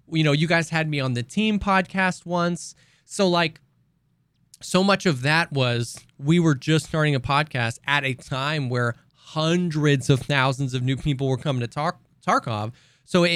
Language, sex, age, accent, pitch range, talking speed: English, male, 20-39, American, 135-175 Hz, 180 wpm